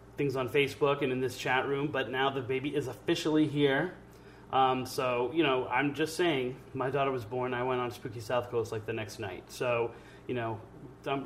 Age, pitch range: 30-49, 120-140 Hz